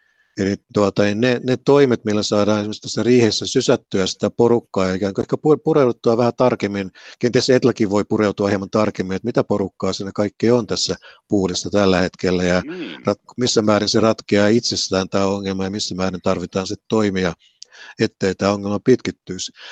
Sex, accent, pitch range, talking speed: male, native, 95-115 Hz, 160 wpm